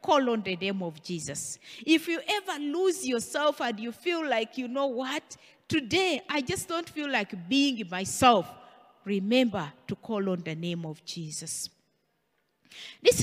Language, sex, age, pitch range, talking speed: English, female, 50-69, 180-275 Hz, 160 wpm